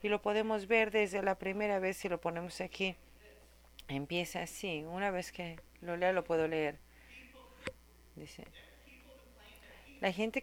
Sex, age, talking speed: female, 40-59, 145 wpm